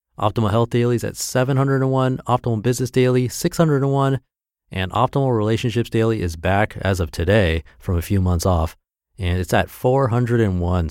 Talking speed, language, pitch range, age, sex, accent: 155 wpm, English, 85-115 Hz, 30-49, male, American